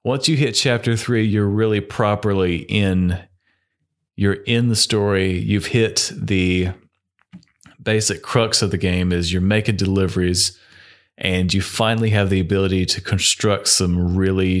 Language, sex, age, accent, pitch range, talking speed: English, male, 30-49, American, 90-105 Hz, 145 wpm